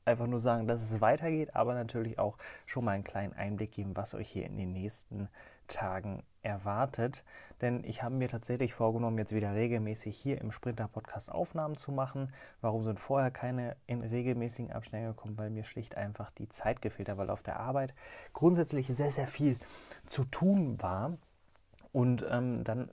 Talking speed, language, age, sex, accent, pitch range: 180 wpm, German, 30-49, male, German, 105-125 Hz